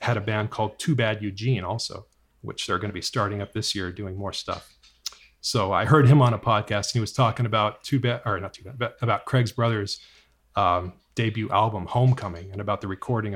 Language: English